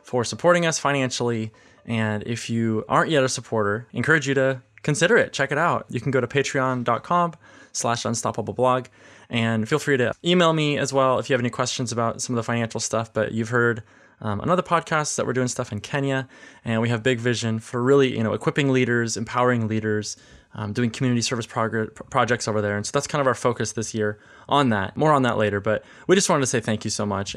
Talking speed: 230 wpm